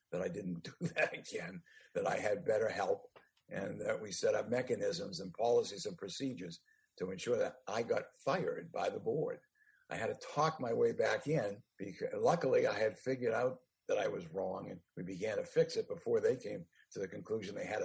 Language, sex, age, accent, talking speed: English, male, 60-79, American, 205 wpm